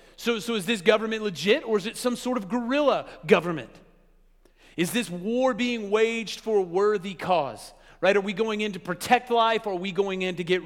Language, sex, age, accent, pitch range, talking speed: English, male, 40-59, American, 180-235 Hz, 215 wpm